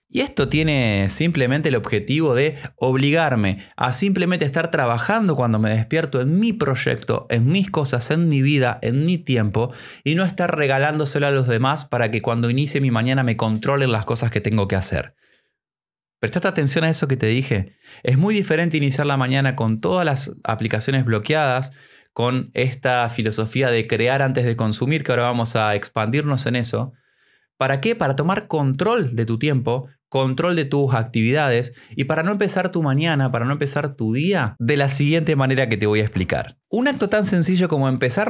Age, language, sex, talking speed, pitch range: 20-39, Spanish, male, 185 wpm, 120-155 Hz